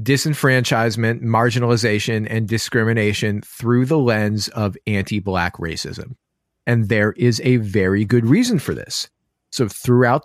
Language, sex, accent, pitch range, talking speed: English, male, American, 110-135 Hz, 125 wpm